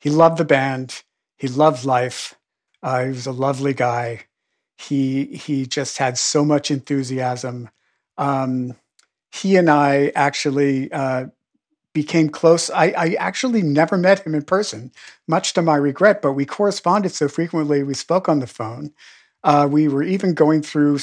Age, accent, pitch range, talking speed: 50-69, American, 140-160 Hz, 160 wpm